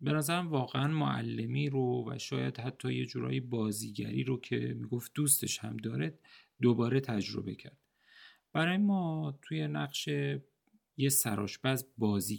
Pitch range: 110-150 Hz